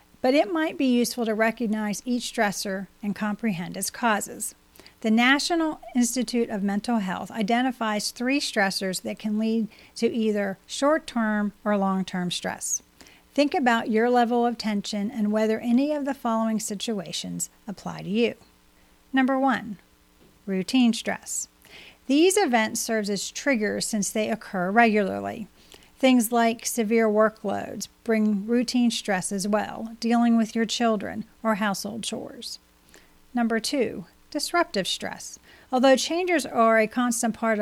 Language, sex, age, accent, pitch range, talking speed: English, female, 40-59, American, 205-245 Hz, 135 wpm